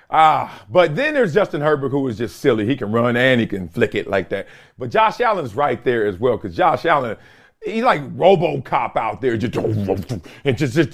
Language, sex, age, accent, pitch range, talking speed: English, male, 40-59, American, 140-215 Hz, 215 wpm